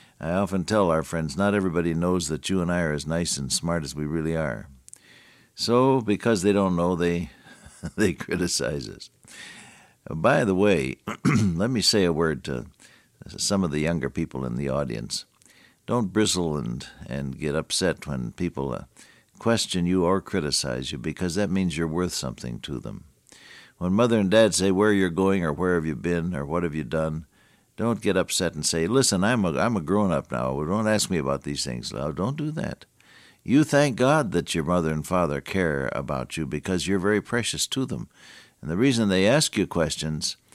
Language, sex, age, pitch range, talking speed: English, male, 60-79, 80-105 Hz, 200 wpm